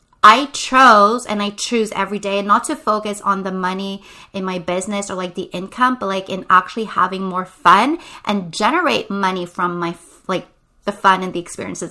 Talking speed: 190 wpm